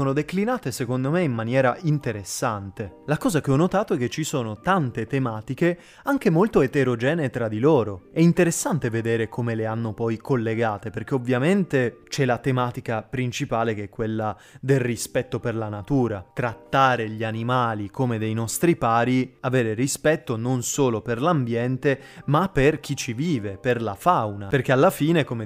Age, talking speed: 20-39, 165 wpm